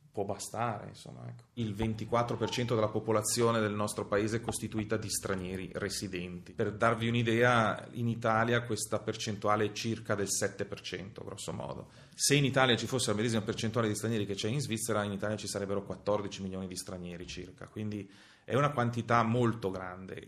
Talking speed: 165 wpm